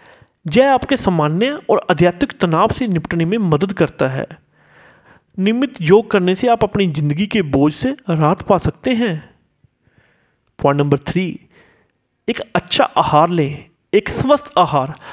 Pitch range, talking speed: 155-245 Hz, 145 wpm